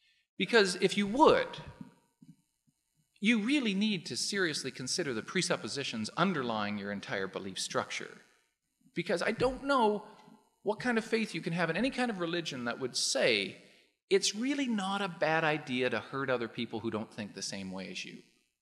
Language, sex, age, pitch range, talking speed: English, male, 40-59, 130-205 Hz, 175 wpm